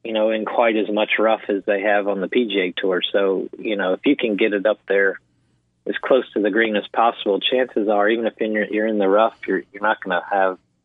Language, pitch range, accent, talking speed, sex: English, 100-120 Hz, American, 260 wpm, male